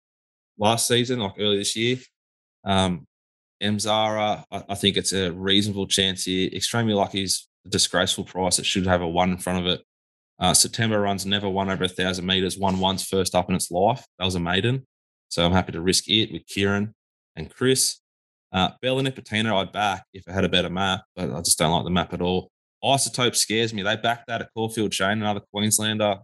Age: 20-39